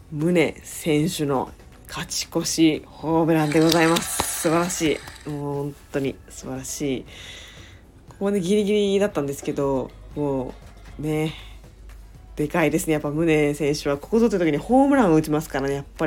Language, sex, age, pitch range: Japanese, female, 20-39, 125-160 Hz